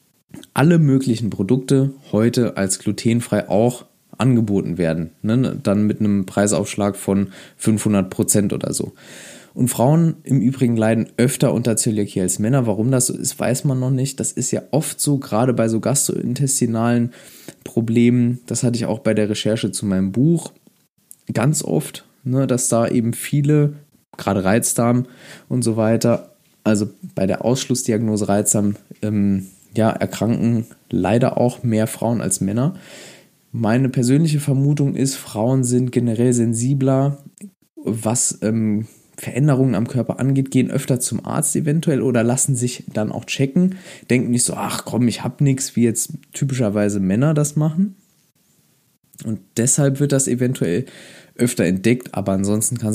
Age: 20-39